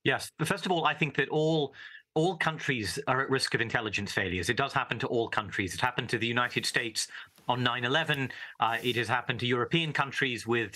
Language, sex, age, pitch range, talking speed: English, male, 30-49, 120-155 Hz, 215 wpm